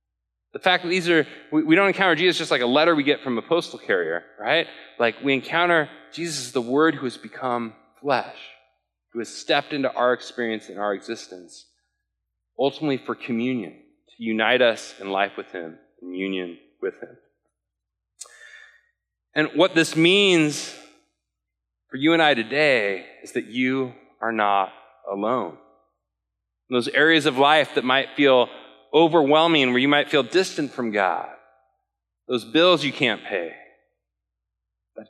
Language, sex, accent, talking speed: English, male, American, 155 wpm